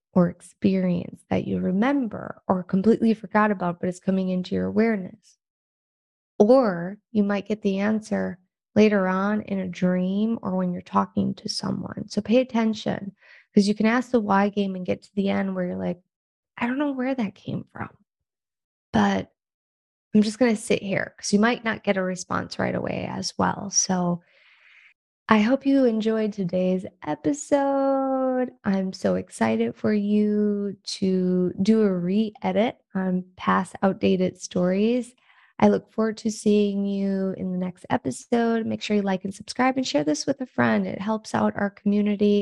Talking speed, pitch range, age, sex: 175 wpm, 185-220 Hz, 20-39, female